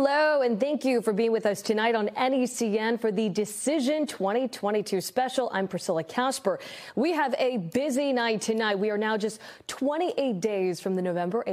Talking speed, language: 175 wpm, English